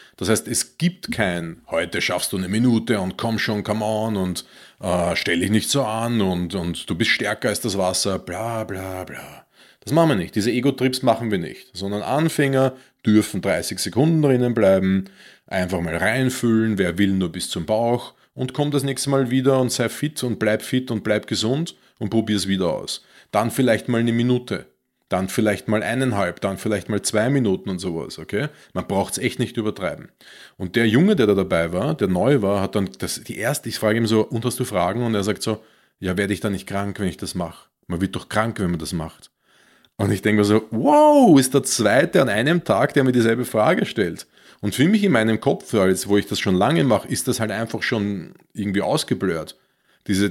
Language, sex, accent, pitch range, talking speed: German, male, Austrian, 95-125 Hz, 215 wpm